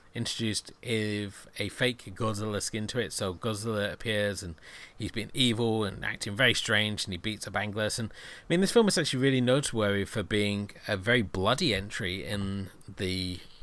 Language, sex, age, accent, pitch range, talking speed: English, male, 40-59, British, 95-115 Hz, 175 wpm